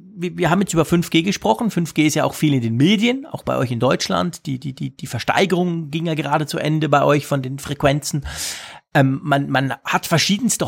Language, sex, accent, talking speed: German, male, German, 215 wpm